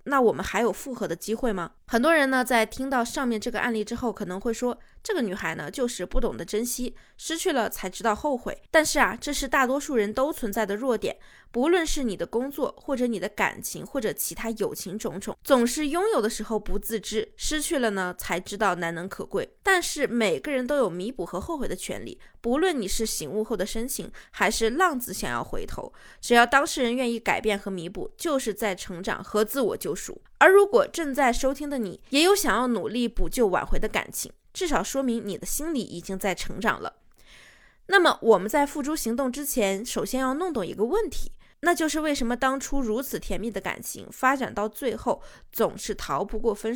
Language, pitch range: Chinese, 215-280 Hz